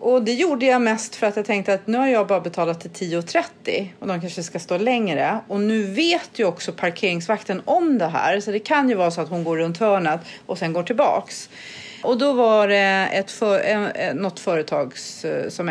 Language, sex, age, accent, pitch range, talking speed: Swedish, female, 40-59, native, 180-245 Hz, 215 wpm